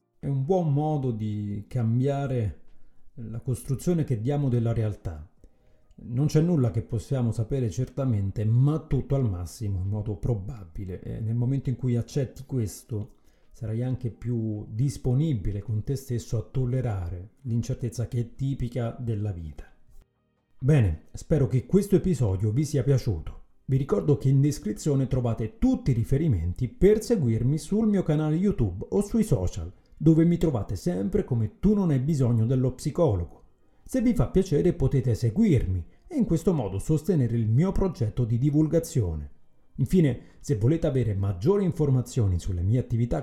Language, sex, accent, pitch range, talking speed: Italian, male, native, 110-145 Hz, 155 wpm